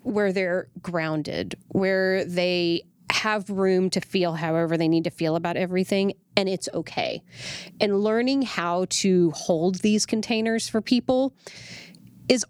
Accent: American